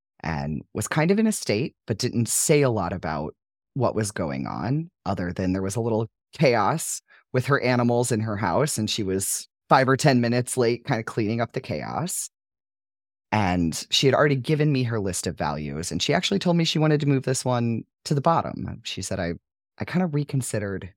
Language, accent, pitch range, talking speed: English, American, 90-135 Hz, 215 wpm